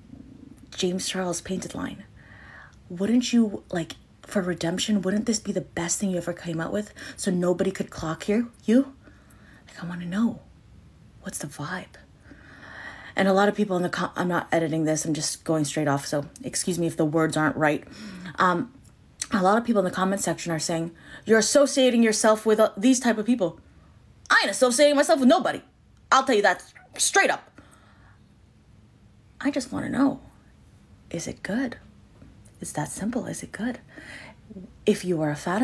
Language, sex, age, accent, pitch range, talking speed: English, female, 20-39, American, 165-220 Hz, 185 wpm